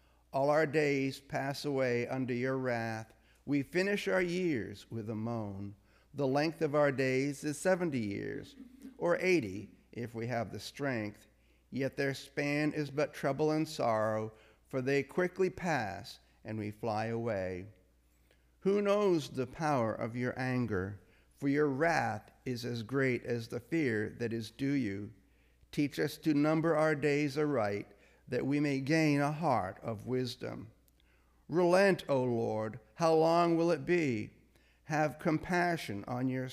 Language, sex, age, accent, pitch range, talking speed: English, male, 50-69, American, 110-150 Hz, 155 wpm